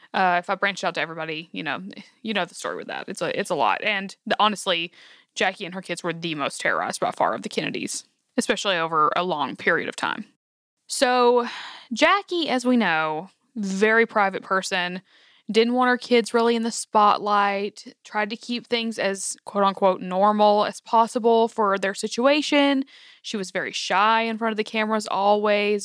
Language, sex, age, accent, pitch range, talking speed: English, female, 20-39, American, 195-235 Hz, 185 wpm